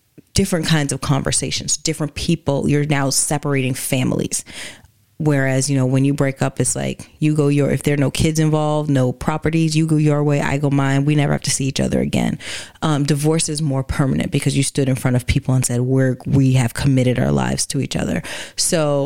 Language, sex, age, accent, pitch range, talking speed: English, female, 30-49, American, 135-155 Hz, 215 wpm